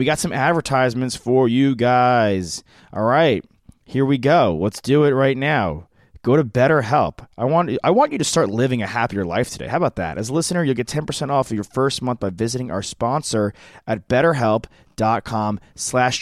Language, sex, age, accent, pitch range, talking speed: English, male, 30-49, American, 115-145 Hz, 195 wpm